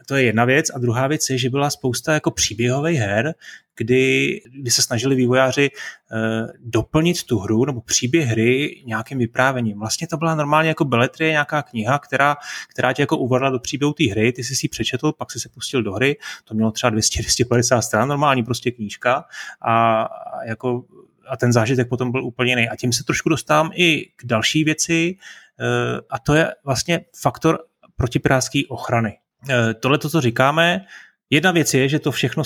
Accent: native